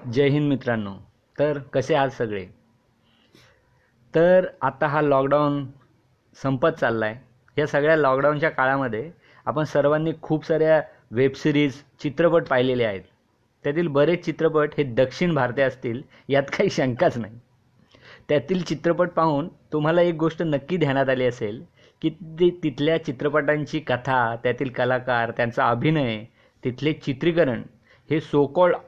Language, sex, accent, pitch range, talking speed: Marathi, male, native, 125-155 Hz, 125 wpm